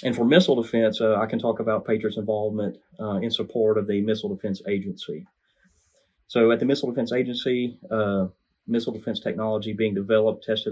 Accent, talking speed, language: American, 180 wpm, English